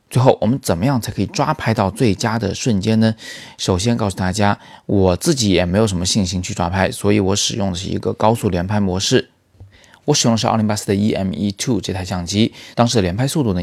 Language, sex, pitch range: Chinese, male, 95-115 Hz